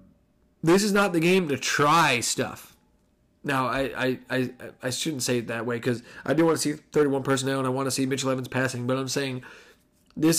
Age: 30-49